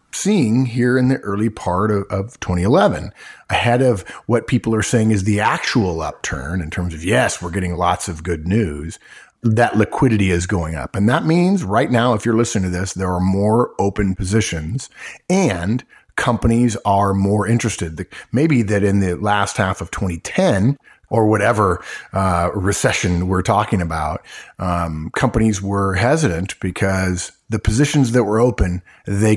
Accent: American